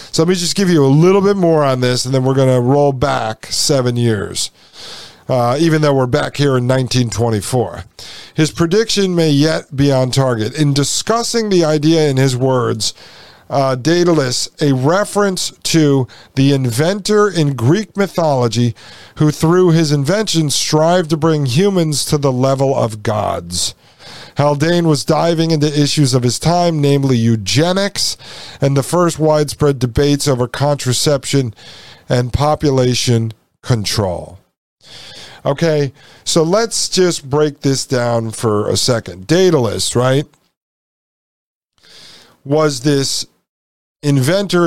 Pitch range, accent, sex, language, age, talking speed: 125-160 Hz, American, male, English, 50-69, 135 wpm